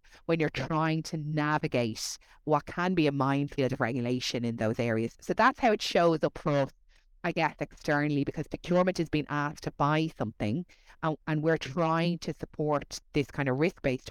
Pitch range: 135-165 Hz